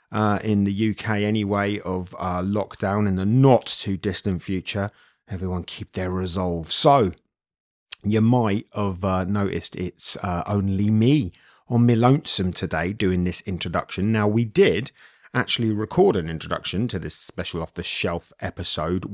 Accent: British